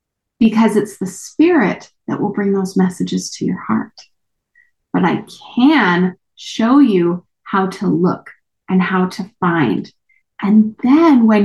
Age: 20-39